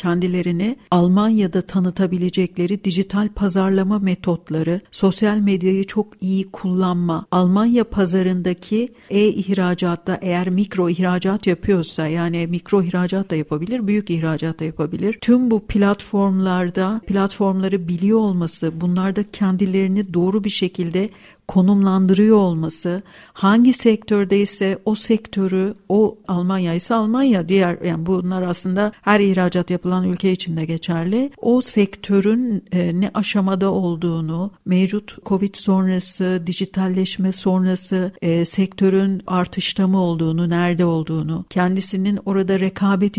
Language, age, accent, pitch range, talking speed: Turkish, 60-79, native, 180-200 Hz, 115 wpm